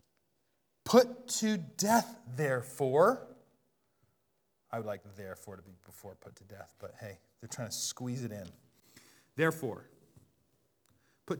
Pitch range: 120-165 Hz